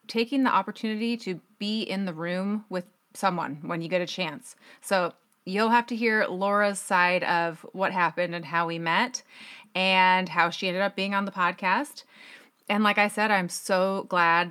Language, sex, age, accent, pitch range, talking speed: English, female, 30-49, American, 180-230 Hz, 185 wpm